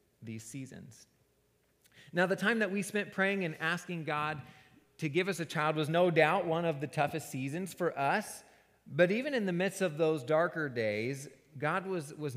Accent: American